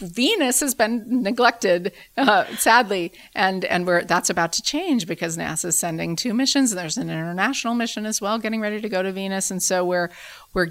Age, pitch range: 30-49, 155-200 Hz